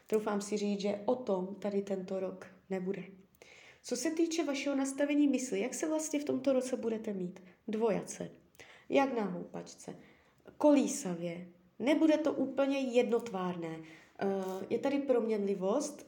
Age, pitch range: 20-39, 195-255 Hz